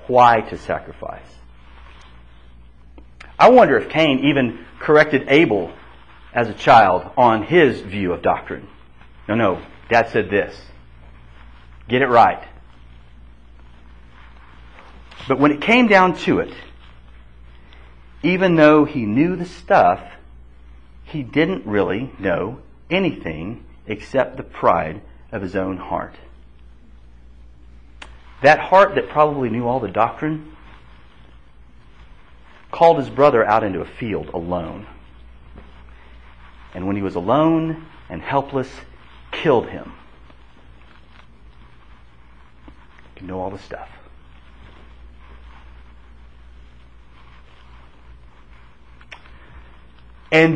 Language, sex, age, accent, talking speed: English, male, 40-59, American, 95 wpm